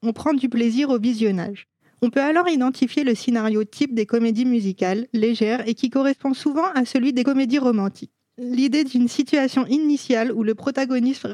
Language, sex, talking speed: French, female, 175 wpm